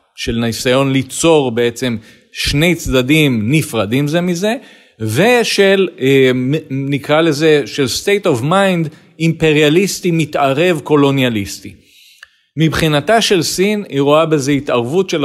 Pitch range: 120-165 Hz